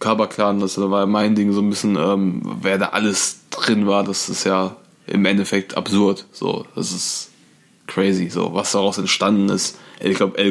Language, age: German, 20-39